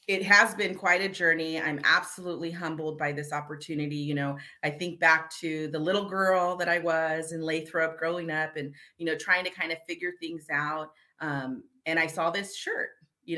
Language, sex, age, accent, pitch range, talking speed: English, female, 30-49, American, 155-190 Hz, 200 wpm